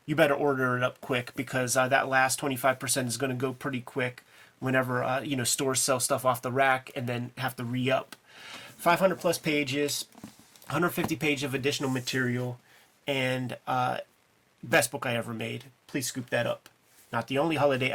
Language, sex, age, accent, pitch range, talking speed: English, male, 30-49, American, 130-145 Hz, 185 wpm